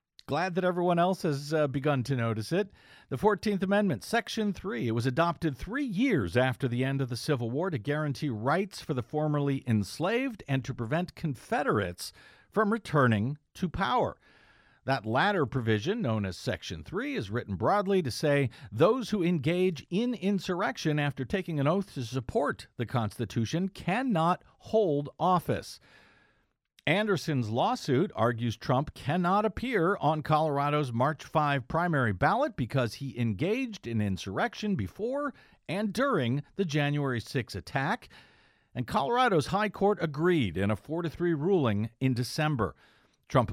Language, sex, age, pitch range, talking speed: English, male, 50-69, 125-185 Hz, 145 wpm